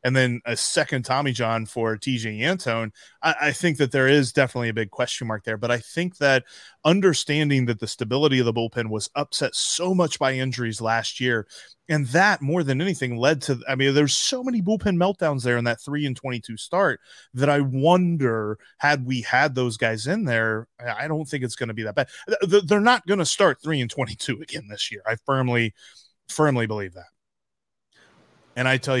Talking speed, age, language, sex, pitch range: 200 wpm, 20-39, English, male, 120-165 Hz